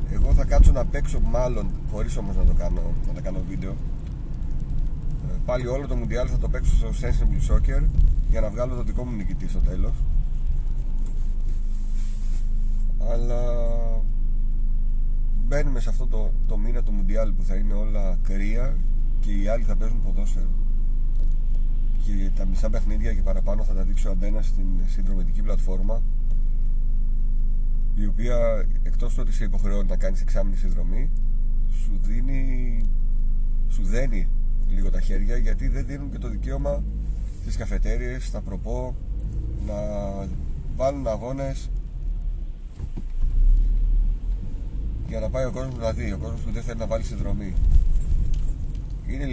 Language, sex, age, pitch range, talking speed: Greek, male, 30-49, 95-110 Hz, 135 wpm